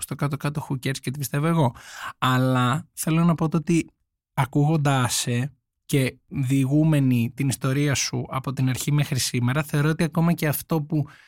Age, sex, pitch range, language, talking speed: 20-39, male, 125-165 Hz, Greek, 160 wpm